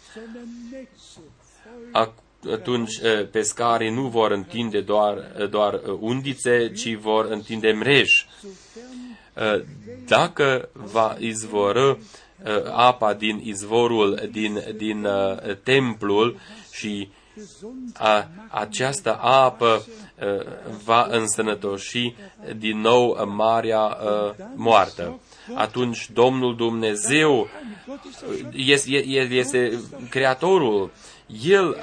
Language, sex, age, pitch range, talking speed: Romanian, male, 30-49, 105-130 Hz, 70 wpm